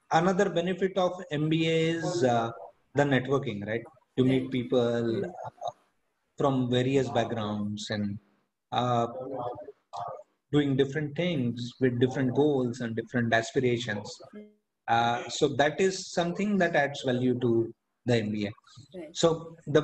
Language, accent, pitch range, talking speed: English, Indian, 125-165 Hz, 120 wpm